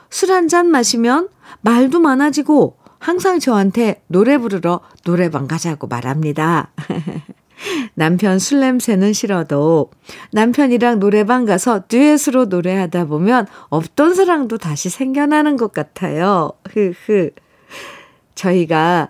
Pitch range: 170-250 Hz